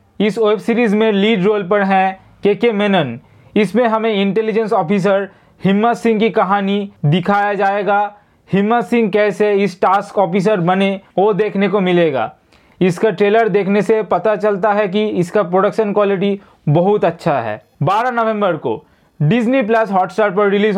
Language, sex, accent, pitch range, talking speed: Hindi, male, native, 190-215 Hz, 155 wpm